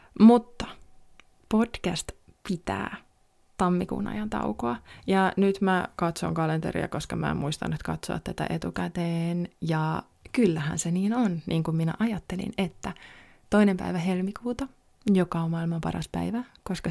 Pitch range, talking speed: 170-220 Hz, 130 wpm